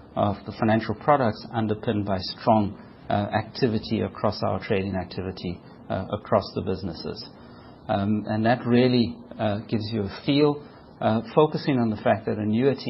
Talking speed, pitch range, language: 155 wpm, 105-125 Hz, English